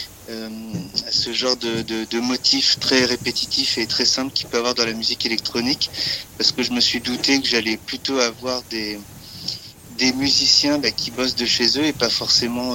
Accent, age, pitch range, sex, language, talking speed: French, 40-59, 110-130 Hz, male, French, 195 wpm